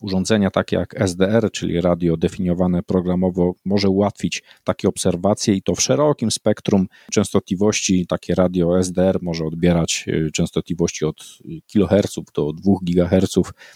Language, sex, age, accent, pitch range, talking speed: Polish, male, 40-59, native, 85-100 Hz, 125 wpm